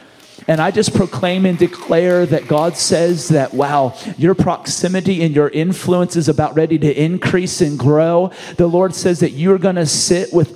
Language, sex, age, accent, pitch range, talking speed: English, male, 30-49, American, 150-185 Hz, 190 wpm